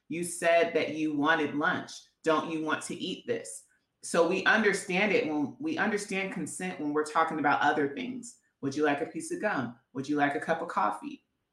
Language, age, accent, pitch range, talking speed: English, 30-49, American, 150-190 Hz, 210 wpm